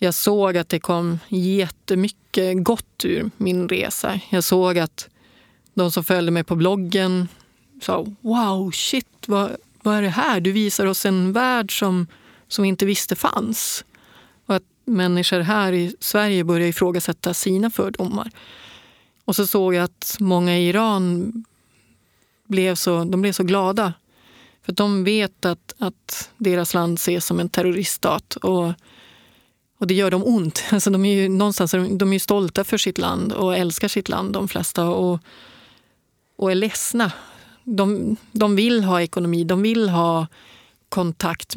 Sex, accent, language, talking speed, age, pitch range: female, native, Swedish, 155 wpm, 30-49, 180-205 Hz